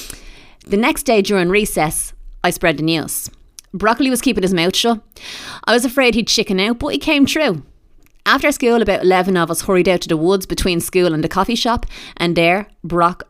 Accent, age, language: Irish, 30-49, English